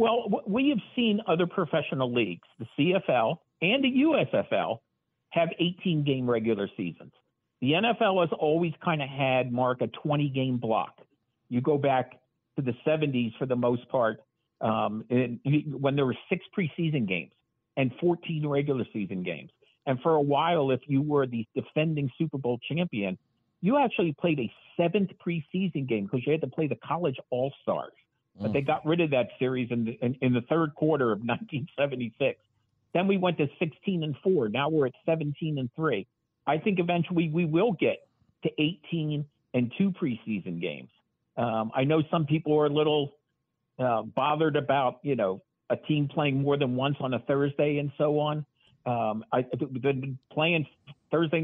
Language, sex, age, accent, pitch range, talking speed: English, male, 50-69, American, 125-165 Hz, 170 wpm